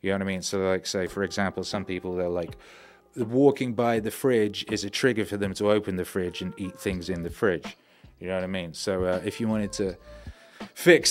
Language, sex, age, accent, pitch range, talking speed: English, male, 30-49, British, 95-115 Hz, 245 wpm